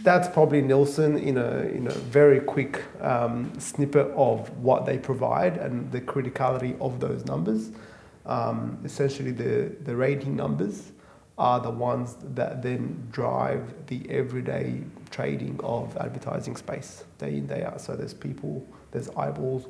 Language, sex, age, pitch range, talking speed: English, male, 30-49, 115-140 Hz, 145 wpm